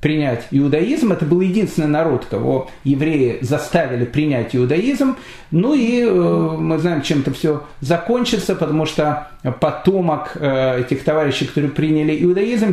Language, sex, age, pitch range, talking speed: Russian, male, 40-59, 145-195 Hz, 125 wpm